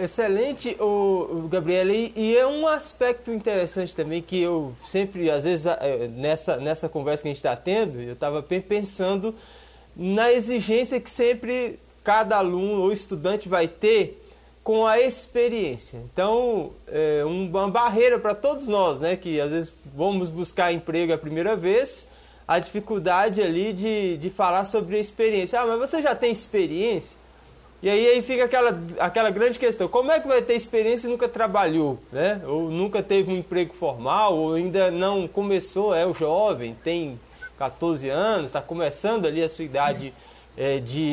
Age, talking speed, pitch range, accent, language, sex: 20-39, 165 wpm, 170-240 Hz, Brazilian, Portuguese, male